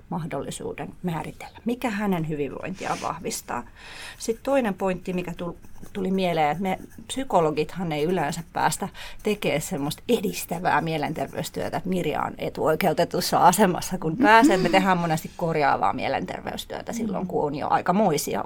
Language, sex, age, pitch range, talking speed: Finnish, female, 30-49, 165-225 Hz, 125 wpm